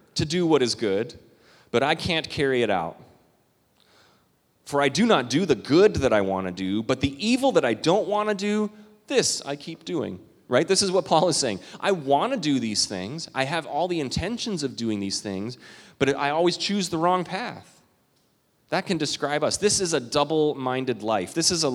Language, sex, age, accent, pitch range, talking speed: English, male, 30-49, American, 105-155 Hz, 210 wpm